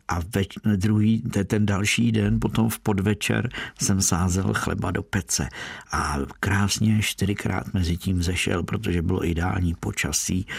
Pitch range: 95-110 Hz